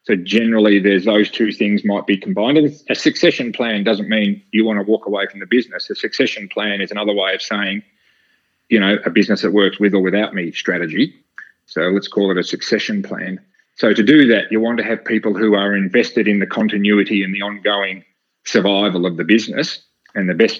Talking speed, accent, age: 215 wpm, Australian, 30-49